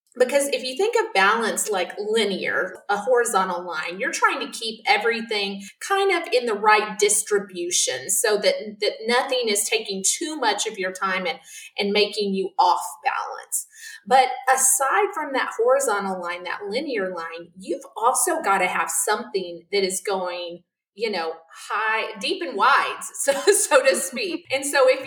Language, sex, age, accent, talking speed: English, female, 30-49, American, 170 wpm